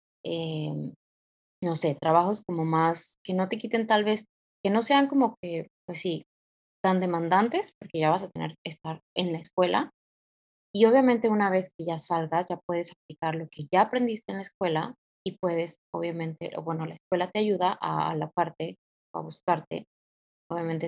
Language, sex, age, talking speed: Spanish, female, 20-39, 180 wpm